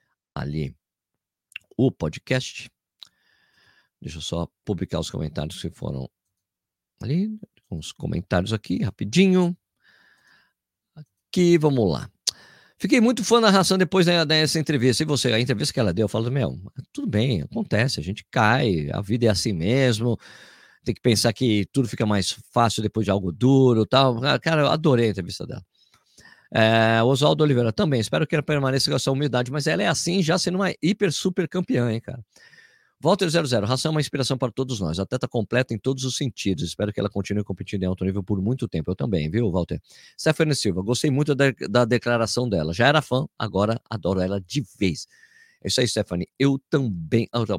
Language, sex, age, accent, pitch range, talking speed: Portuguese, male, 50-69, Brazilian, 100-145 Hz, 180 wpm